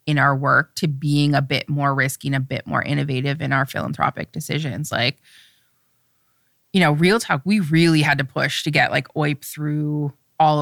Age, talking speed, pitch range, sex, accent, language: 20-39, 190 wpm, 140-155 Hz, female, American, English